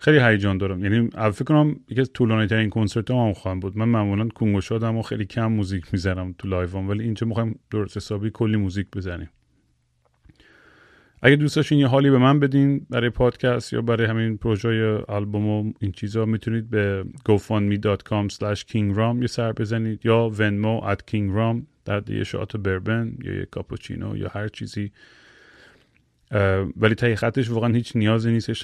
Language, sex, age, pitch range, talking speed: Persian, male, 30-49, 100-120 Hz, 160 wpm